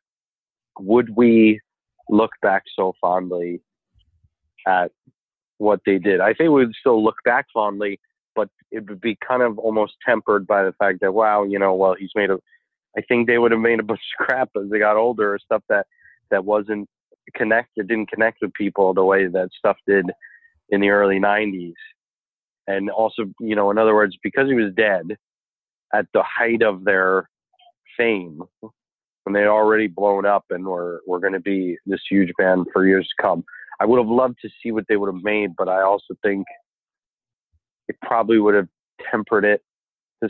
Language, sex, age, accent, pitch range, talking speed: English, male, 30-49, American, 95-110 Hz, 190 wpm